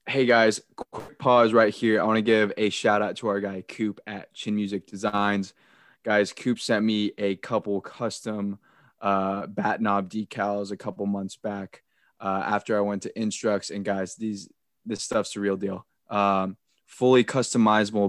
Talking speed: 175 wpm